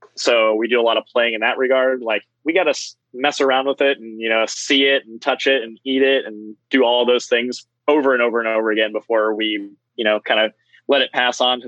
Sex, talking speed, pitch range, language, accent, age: male, 260 wpm, 110-130 Hz, English, American, 20-39